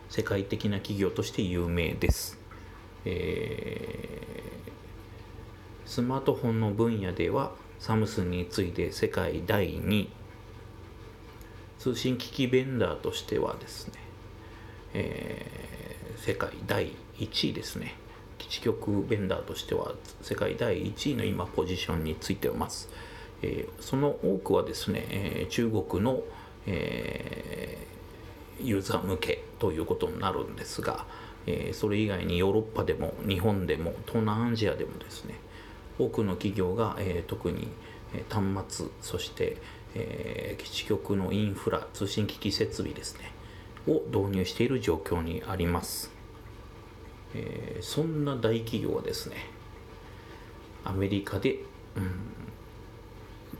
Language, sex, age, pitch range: Japanese, male, 40-59, 95-110 Hz